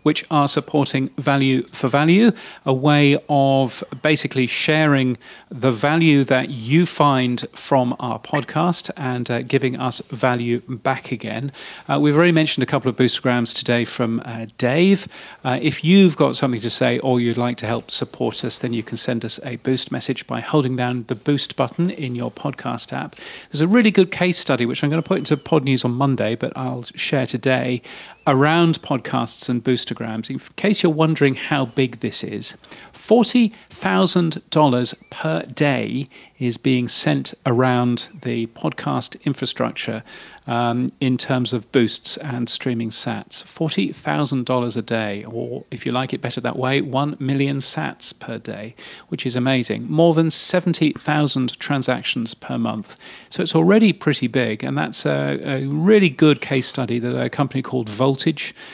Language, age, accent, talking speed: English, 40-59, British, 165 wpm